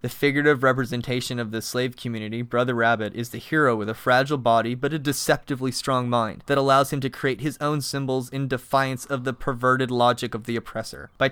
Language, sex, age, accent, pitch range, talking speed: English, male, 20-39, American, 115-135 Hz, 205 wpm